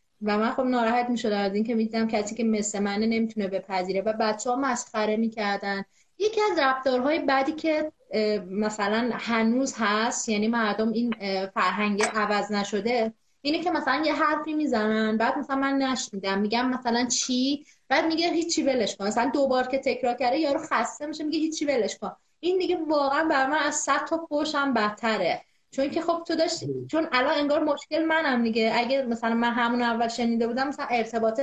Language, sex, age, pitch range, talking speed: Persian, female, 30-49, 220-290 Hz, 180 wpm